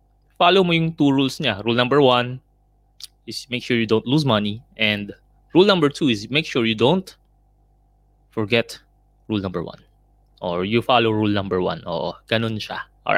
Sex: male